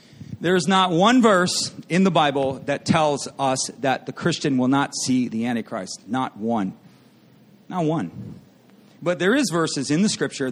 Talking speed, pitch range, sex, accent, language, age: 165 wpm, 140-195 Hz, male, American, English, 40-59